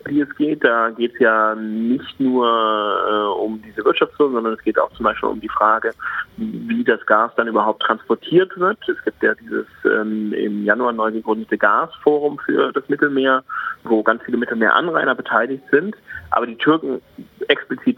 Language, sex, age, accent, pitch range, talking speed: German, male, 30-49, German, 110-175 Hz, 175 wpm